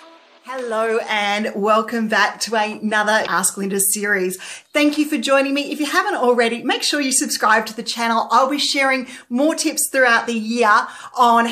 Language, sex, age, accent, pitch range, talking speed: English, female, 40-59, Australian, 215-270 Hz, 175 wpm